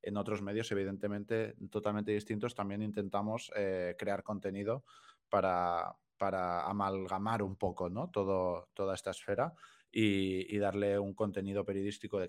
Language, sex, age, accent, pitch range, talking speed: Spanish, male, 20-39, Spanish, 95-110 Hz, 135 wpm